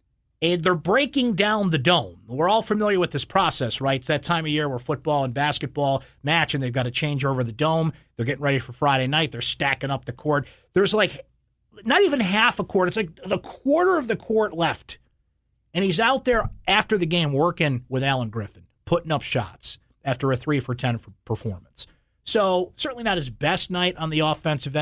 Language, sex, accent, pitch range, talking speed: English, male, American, 130-170 Hz, 205 wpm